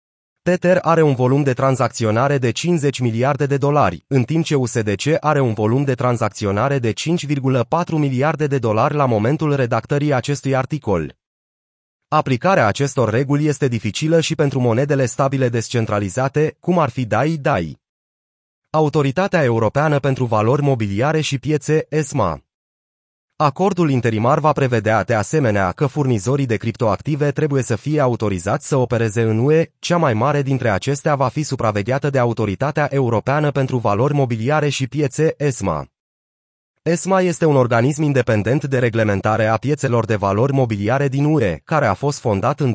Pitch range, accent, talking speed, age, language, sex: 115-150 Hz, native, 150 wpm, 30-49, Romanian, male